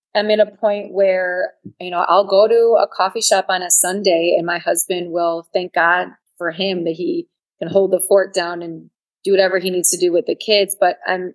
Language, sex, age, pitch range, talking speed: English, female, 30-49, 185-255 Hz, 225 wpm